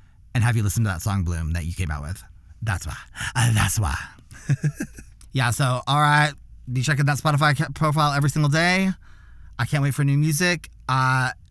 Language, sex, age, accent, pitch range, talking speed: English, male, 20-39, American, 105-165 Hz, 190 wpm